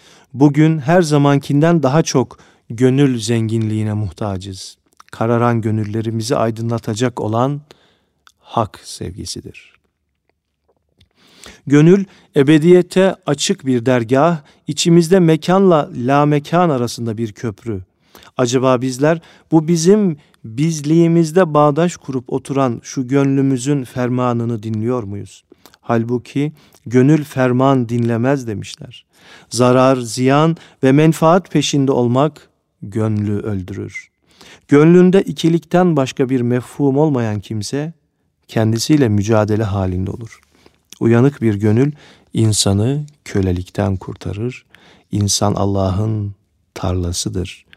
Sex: male